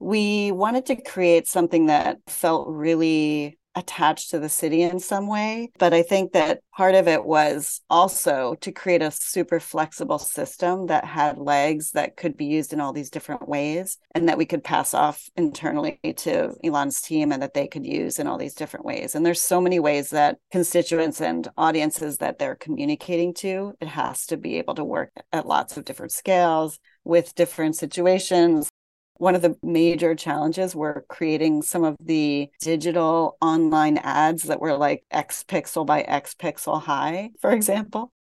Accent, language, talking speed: American, English, 180 wpm